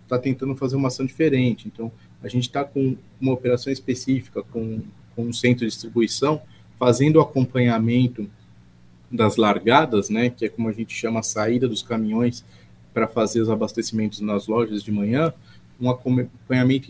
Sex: male